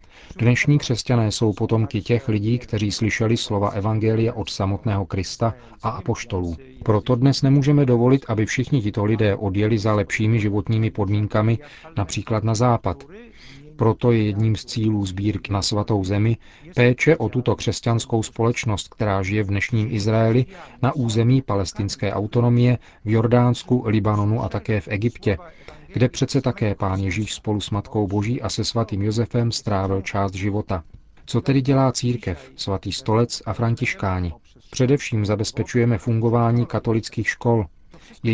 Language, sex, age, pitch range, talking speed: Czech, male, 40-59, 105-120 Hz, 140 wpm